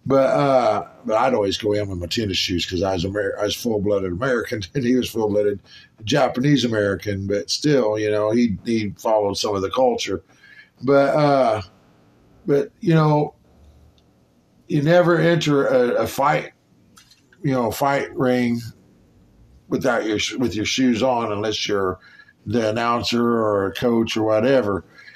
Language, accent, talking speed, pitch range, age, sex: English, American, 165 wpm, 100-140 Hz, 50-69, male